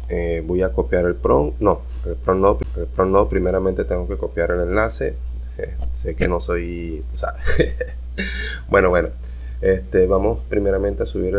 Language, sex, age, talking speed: English, male, 30-49, 155 wpm